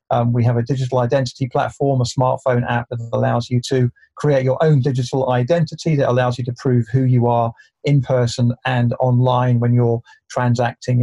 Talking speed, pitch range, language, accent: 185 wpm, 120-145 Hz, English, British